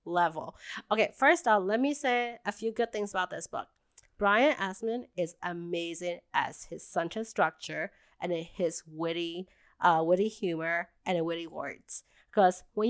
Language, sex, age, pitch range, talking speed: English, female, 30-49, 175-240 Hz, 160 wpm